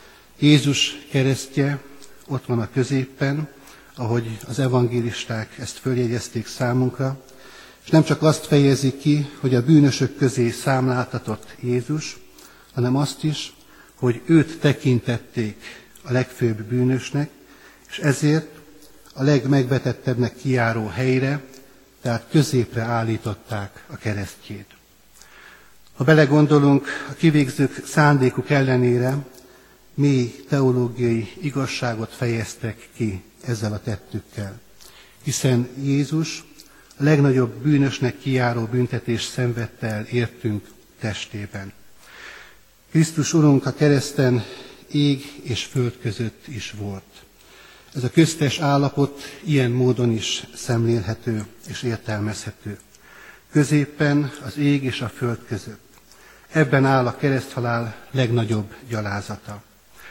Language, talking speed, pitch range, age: Hungarian, 100 wpm, 115-140 Hz, 60-79